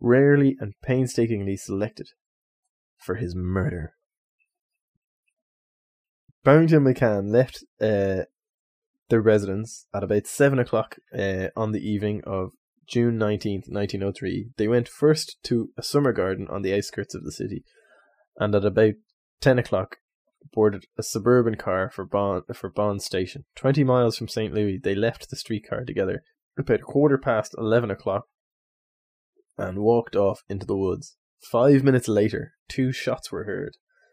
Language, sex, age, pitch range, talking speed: English, male, 20-39, 105-130 Hz, 140 wpm